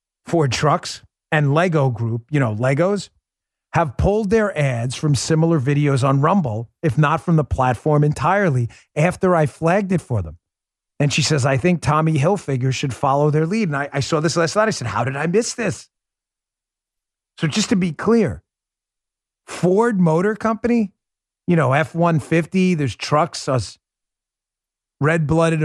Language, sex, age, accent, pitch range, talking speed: English, male, 40-59, American, 140-190 Hz, 160 wpm